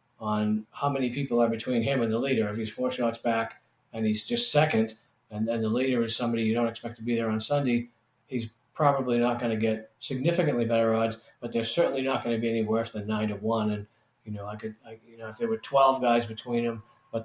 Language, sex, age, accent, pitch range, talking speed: English, male, 40-59, American, 110-130 Hz, 245 wpm